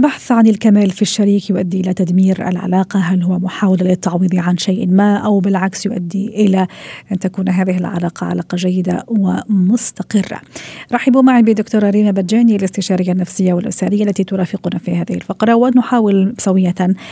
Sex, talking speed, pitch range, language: female, 145 wpm, 185-215 Hz, Arabic